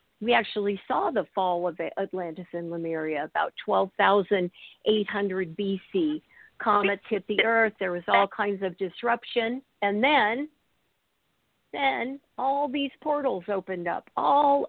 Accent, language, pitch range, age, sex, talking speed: American, English, 185-230 Hz, 50-69, female, 125 wpm